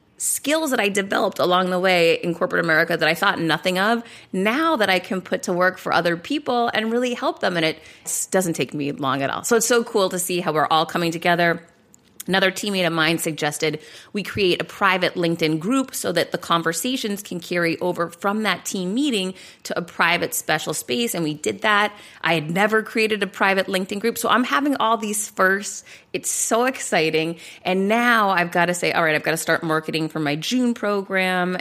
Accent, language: American, English